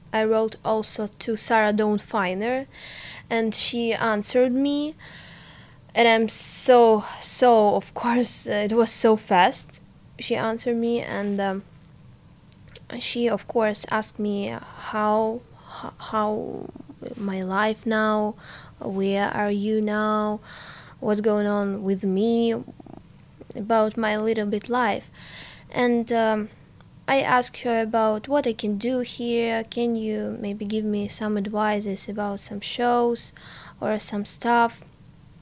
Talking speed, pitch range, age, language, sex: 125 wpm, 205-235 Hz, 20-39, English, female